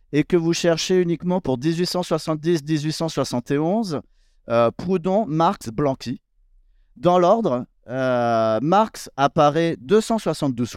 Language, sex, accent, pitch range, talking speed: French, male, French, 115-165 Hz, 95 wpm